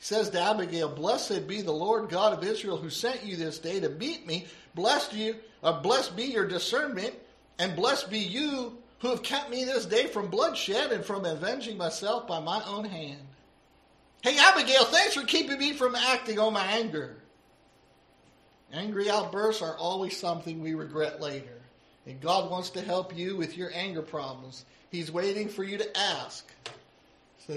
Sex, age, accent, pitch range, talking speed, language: male, 50-69, American, 140-210 Hz, 180 wpm, English